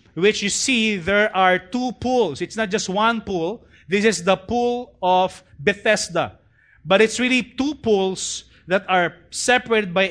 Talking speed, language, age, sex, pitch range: 160 wpm, English, 30-49, male, 145-200 Hz